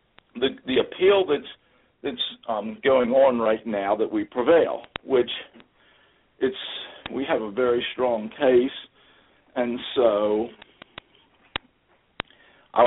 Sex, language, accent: male, English, American